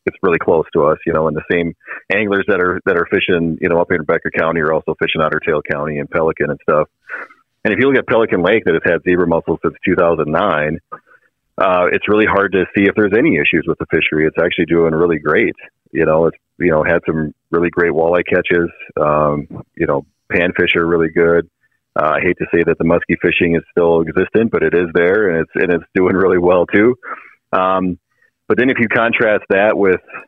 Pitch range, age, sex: 80-85 Hz, 40-59, male